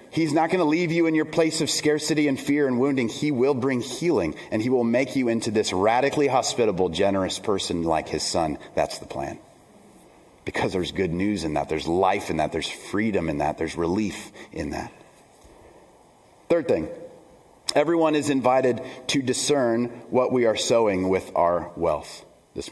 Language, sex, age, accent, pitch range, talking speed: English, male, 30-49, American, 120-165 Hz, 180 wpm